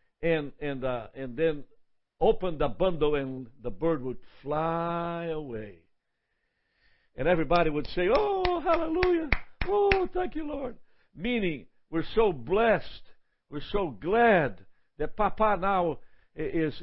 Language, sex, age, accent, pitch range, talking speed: English, male, 60-79, American, 140-215 Hz, 125 wpm